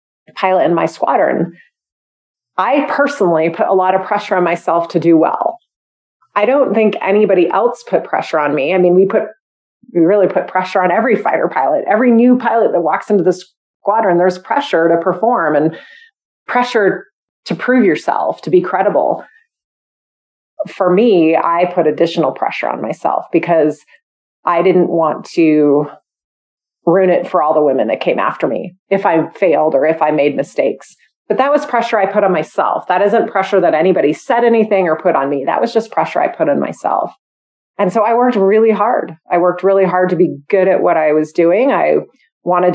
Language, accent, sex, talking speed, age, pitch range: English, American, female, 190 wpm, 30-49, 170-220 Hz